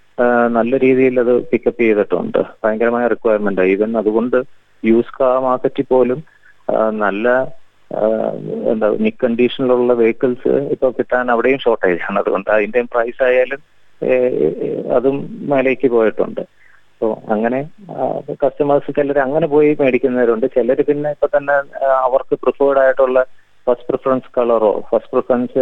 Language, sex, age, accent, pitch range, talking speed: Malayalam, male, 30-49, native, 115-135 Hz, 110 wpm